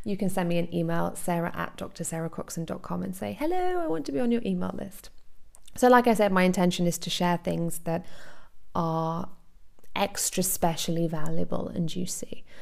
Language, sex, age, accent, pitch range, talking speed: English, female, 20-39, British, 175-215 Hz, 175 wpm